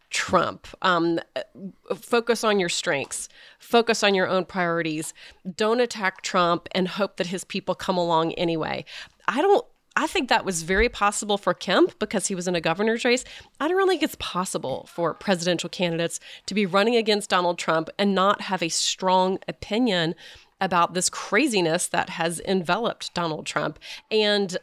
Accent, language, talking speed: American, English, 170 wpm